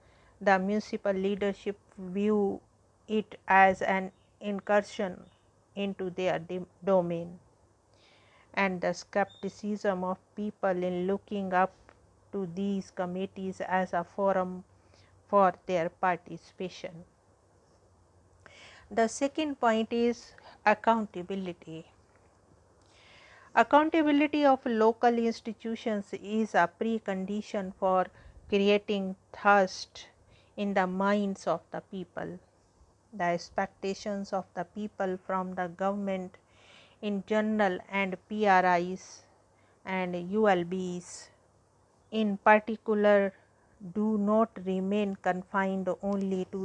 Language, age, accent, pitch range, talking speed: English, 50-69, Indian, 180-205 Hz, 90 wpm